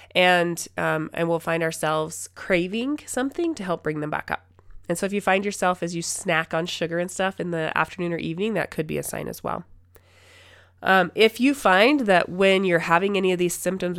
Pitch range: 160-195 Hz